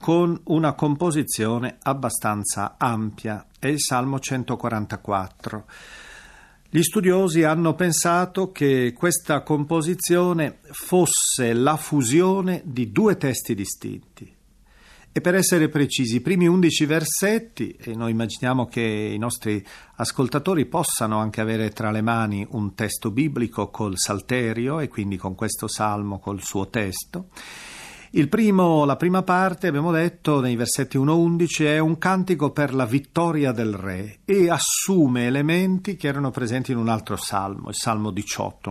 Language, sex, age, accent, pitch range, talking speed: Italian, male, 40-59, native, 110-160 Hz, 135 wpm